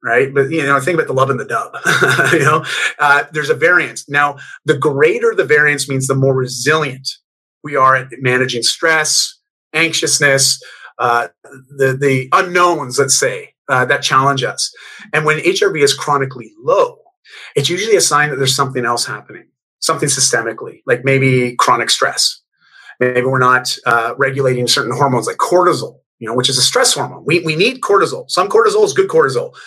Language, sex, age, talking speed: English, male, 30-49, 180 wpm